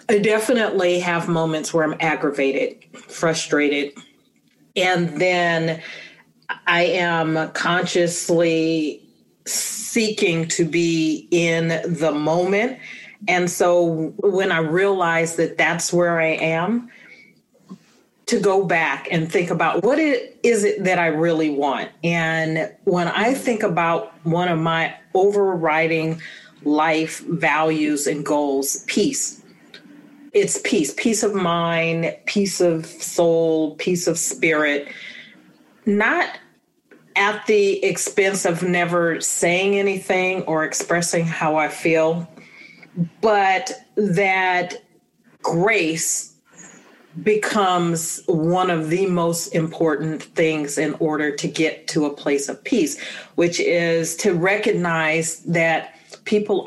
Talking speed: 110 wpm